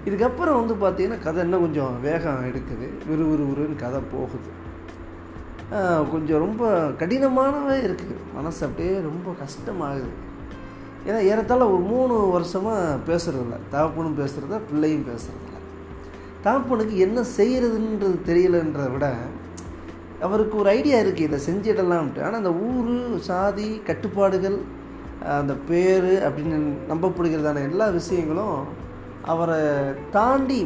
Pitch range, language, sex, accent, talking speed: 130-180 Hz, Tamil, male, native, 105 wpm